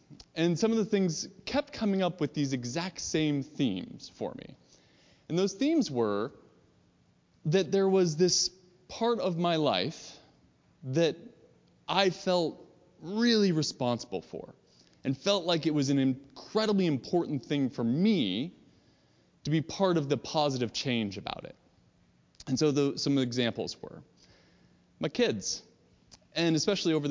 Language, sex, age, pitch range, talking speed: English, male, 20-39, 120-180 Hz, 140 wpm